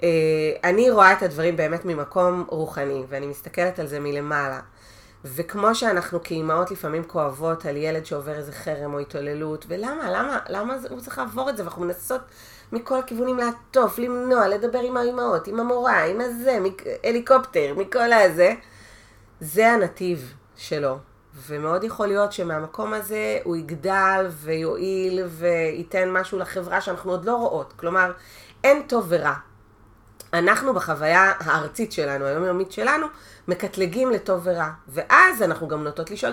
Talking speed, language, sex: 140 wpm, Hebrew, female